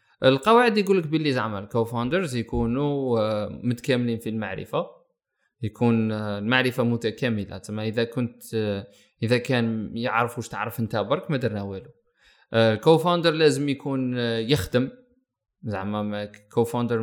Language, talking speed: Arabic, 110 wpm